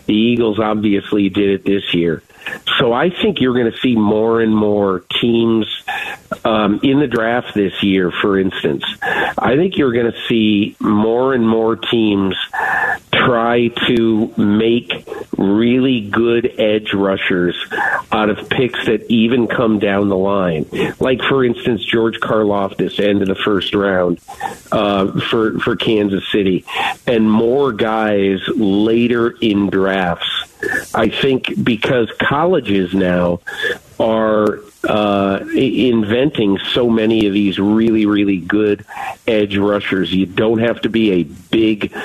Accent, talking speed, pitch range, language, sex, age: American, 140 wpm, 100-115 Hz, English, male, 50-69